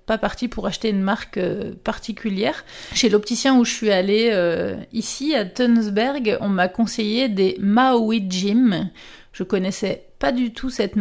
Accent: French